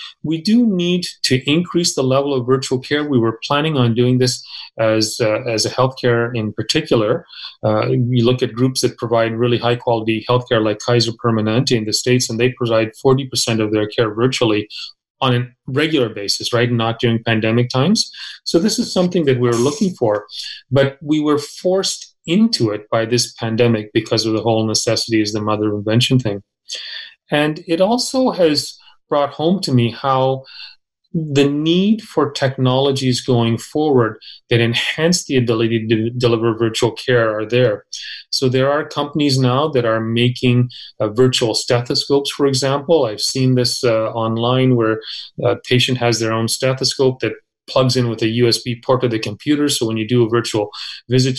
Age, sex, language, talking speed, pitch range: 30-49, male, English, 180 wpm, 115-140 Hz